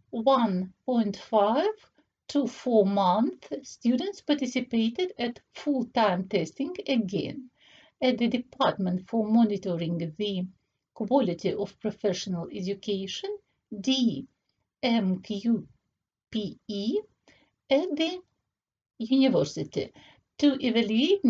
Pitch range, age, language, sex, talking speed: 205-270 Hz, 50-69, Russian, female, 70 wpm